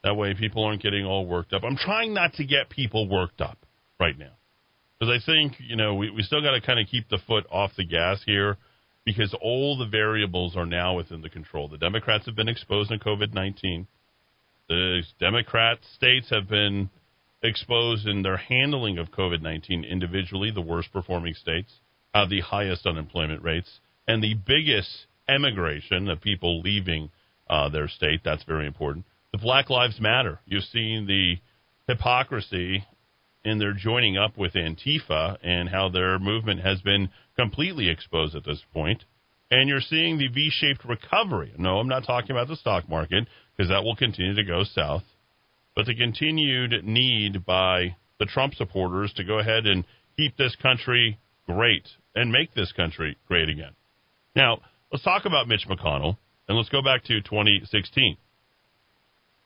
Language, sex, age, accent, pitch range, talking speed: English, male, 40-59, American, 95-120 Hz, 170 wpm